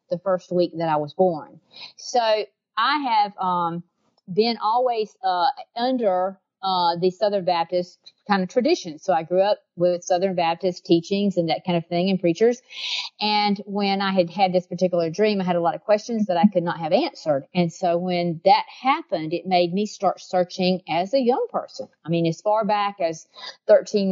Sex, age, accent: female, 40-59, American